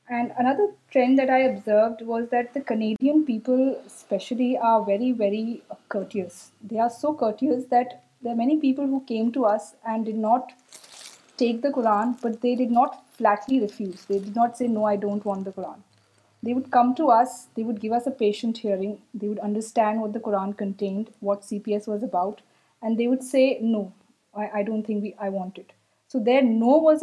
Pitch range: 210-245 Hz